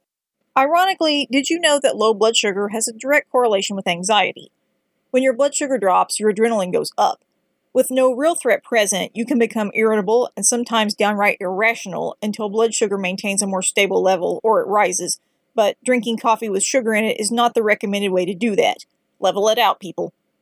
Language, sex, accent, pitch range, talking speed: English, female, American, 205-260 Hz, 195 wpm